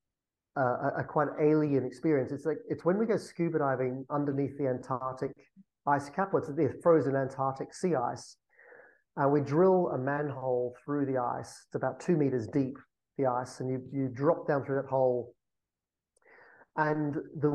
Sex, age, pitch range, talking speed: male, 30-49, 130-155 Hz, 170 wpm